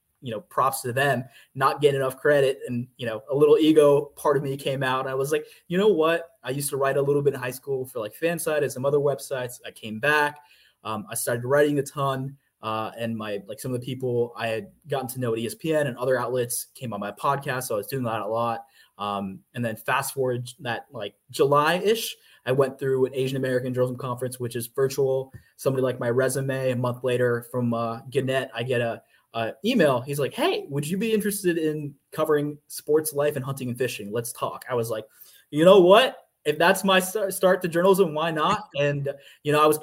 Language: English